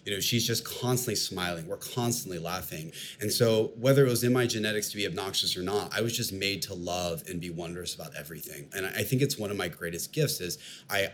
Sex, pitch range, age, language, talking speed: male, 90-115 Hz, 30-49, English, 235 wpm